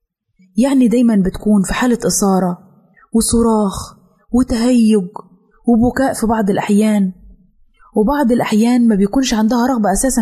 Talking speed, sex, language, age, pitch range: 110 wpm, female, Arabic, 20-39, 180-230 Hz